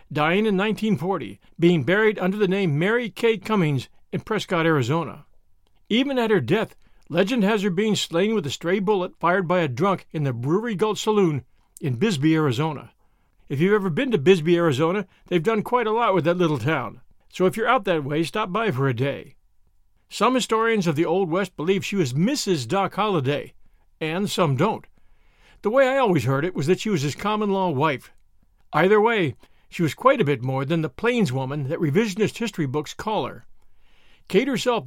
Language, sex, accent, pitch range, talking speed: English, male, American, 155-210 Hz, 195 wpm